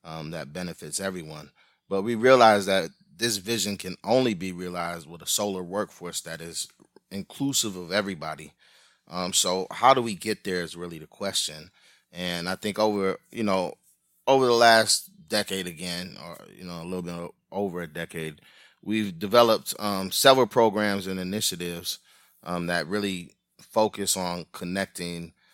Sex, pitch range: male, 85-105 Hz